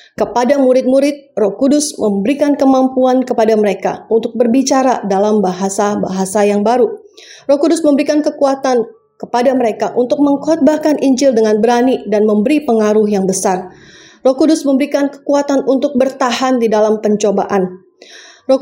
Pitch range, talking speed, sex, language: 215-275 Hz, 130 wpm, female, Indonesian